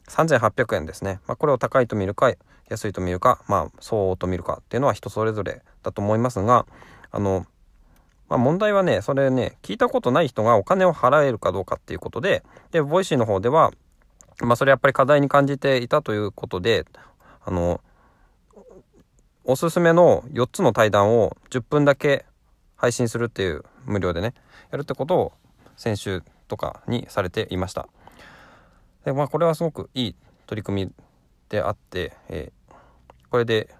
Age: 20-39